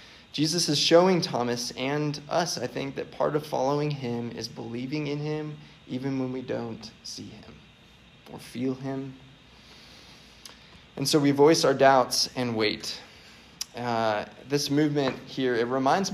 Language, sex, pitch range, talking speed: English, male, 120-145 Hz, 150 wpm